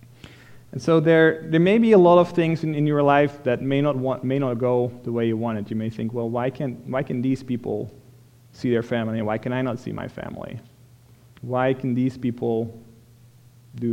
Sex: male